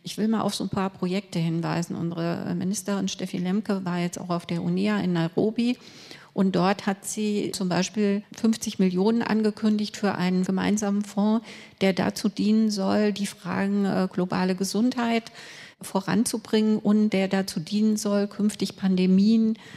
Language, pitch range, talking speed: German, 185-215 Hz, 150 wpm